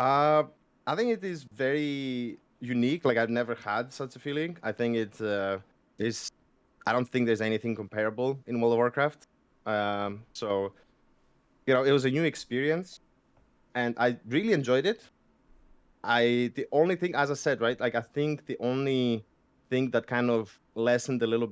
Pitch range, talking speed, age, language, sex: 110-130 Hz, 175 wpm, 20-39, English, male